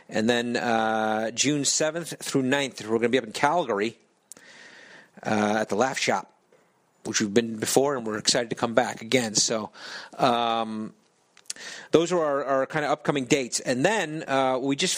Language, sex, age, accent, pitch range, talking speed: English, male, 40-59, American, 110-150 Hz, 180 wpm